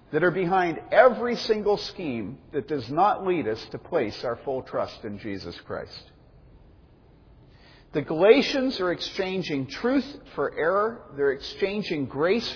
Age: 50-69